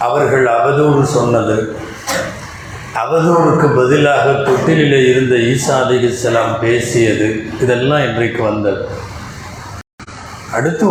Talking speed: 75 wpm